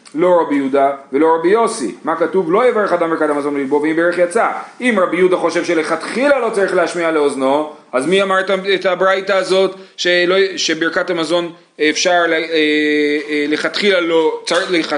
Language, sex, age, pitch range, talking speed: Hebrew, male, 30-49, 145-190 Hz, 140 wpm